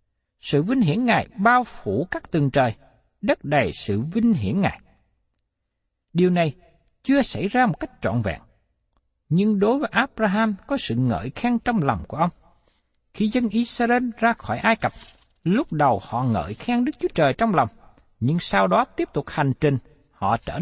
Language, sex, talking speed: Vietnamese, male, 180 wpm